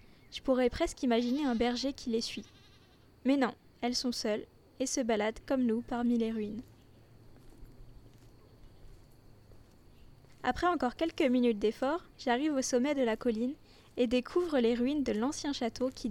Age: 10-29